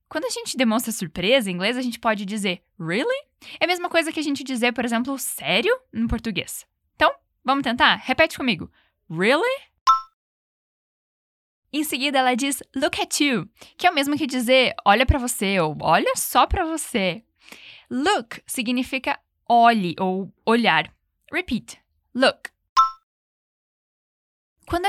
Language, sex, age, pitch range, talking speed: Portuguese, female, 10-29, 210-285 Hz, 145 wpm